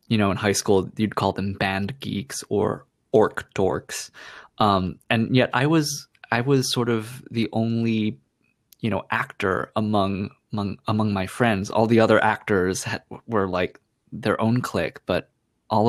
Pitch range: 100-120 Hz